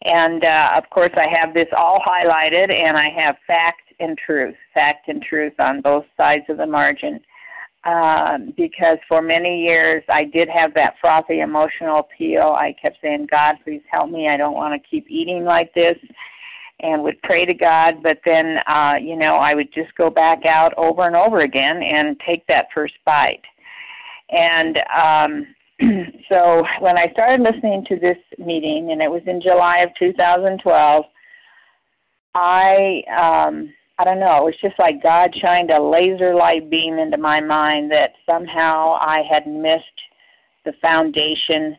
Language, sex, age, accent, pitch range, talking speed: English, female, 50-69, American, 155-180 Hz, 170 wpm